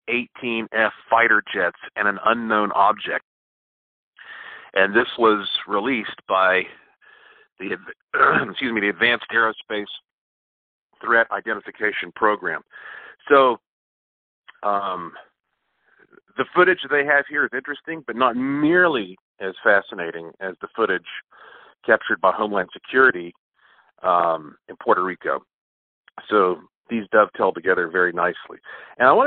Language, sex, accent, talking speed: English, male, American, 115 wpm